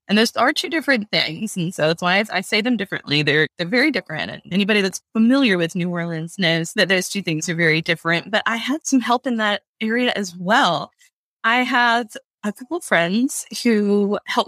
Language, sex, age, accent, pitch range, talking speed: English, female, 20-39, American, 170-230 Hz, 210 wpm